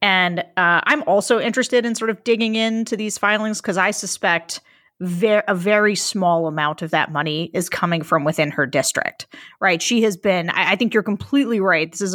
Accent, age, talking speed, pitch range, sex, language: American, 30-49, 195 wpm, 175-230 Hz, female, English